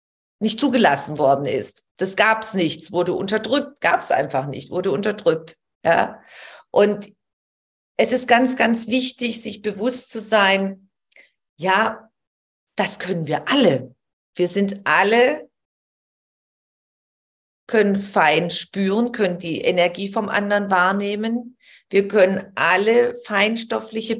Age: 40-59